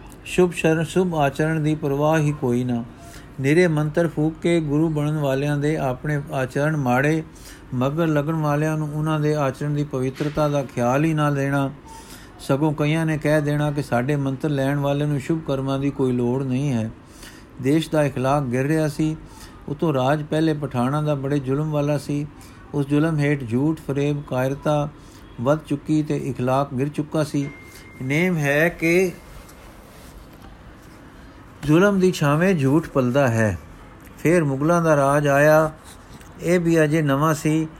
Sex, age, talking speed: male, 50-69, 155 wpm